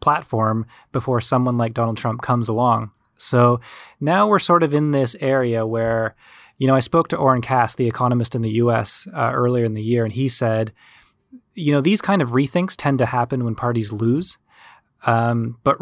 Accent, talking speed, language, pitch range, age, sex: American, 195 wpm, English, 115-135 Hz, 20-39, male